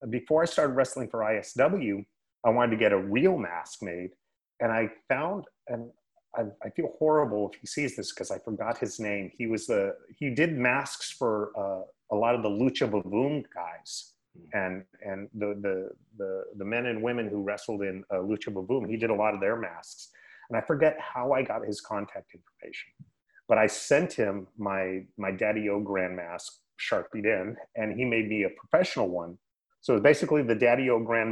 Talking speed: 200 wpm